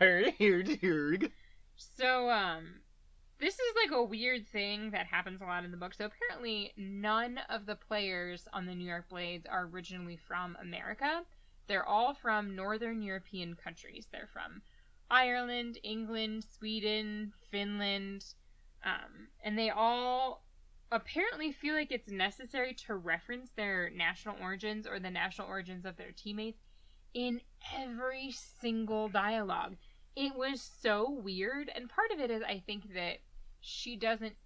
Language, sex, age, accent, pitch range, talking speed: English, female, 10-29, American, 185-230 Hz, 140 wpm